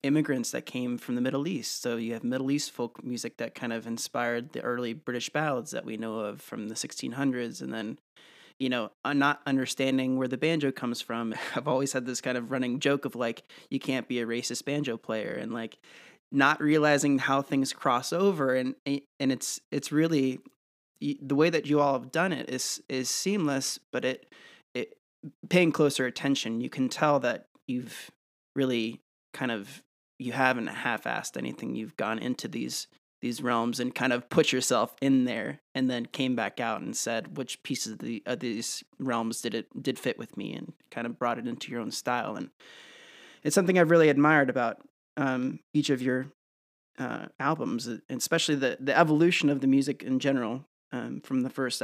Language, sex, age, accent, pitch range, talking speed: English, male, 30-49, American, 120-145 Hz, 195 wpm